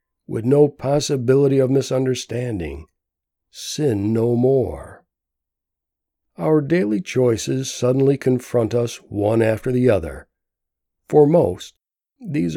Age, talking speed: 60-79, 100 wpm